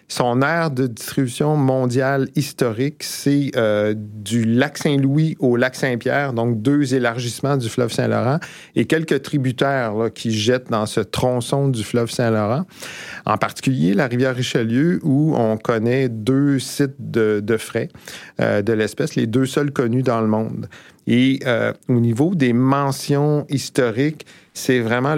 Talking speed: 155 wpm